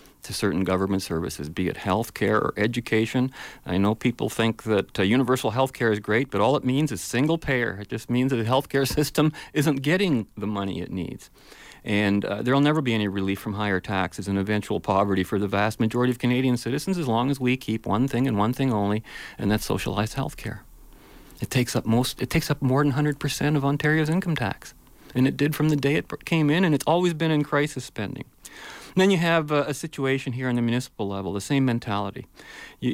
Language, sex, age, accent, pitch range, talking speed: English, male, 40-59, American, 105-135 Hz, 220 wpm